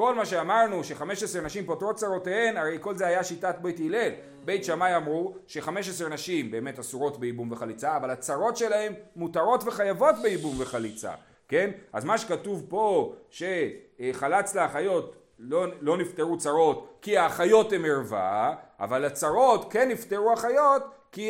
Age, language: 40-59, Hebrew